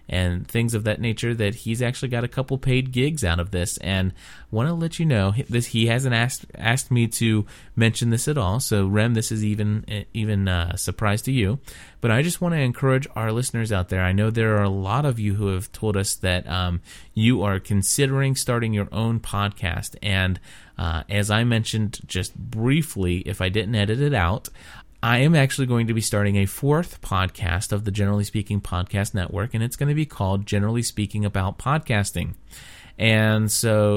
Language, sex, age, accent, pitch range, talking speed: English, male, 30-49, American, 95-120 Hz, 205 wpm